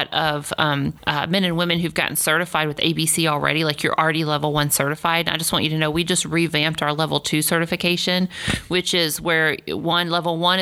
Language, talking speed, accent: English, 210 wpm, American